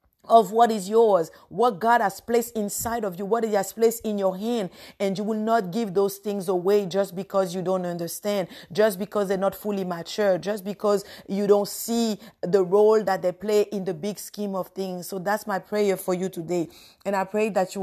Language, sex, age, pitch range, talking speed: English, female, 50-69, 180-210 Hz, 220 wpm